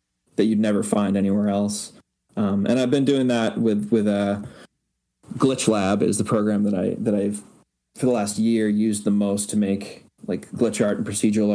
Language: English